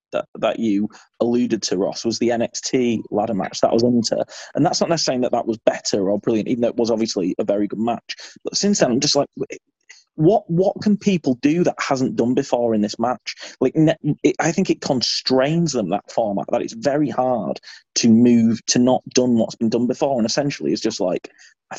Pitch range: 115-145 Hz